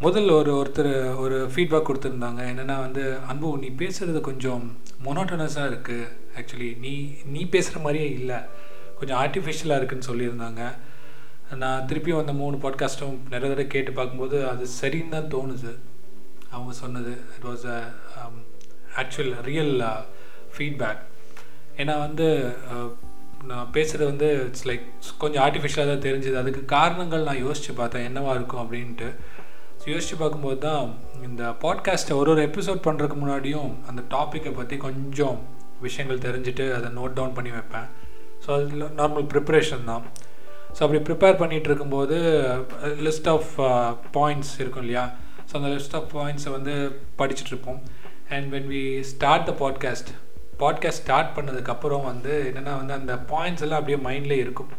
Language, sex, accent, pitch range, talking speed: Tamil, male, native, 125-150 Hz, 135 wpm